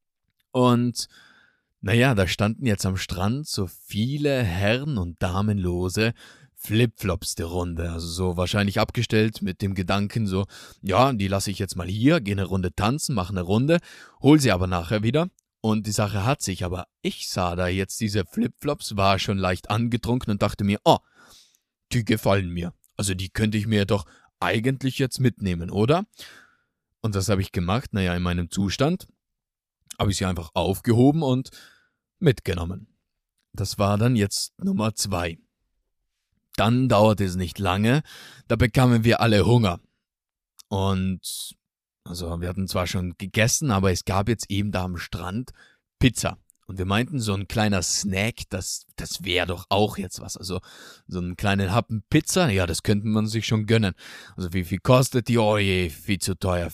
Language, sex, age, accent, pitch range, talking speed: German, male, 30-49, German, 95-115 Hz, 170 wpm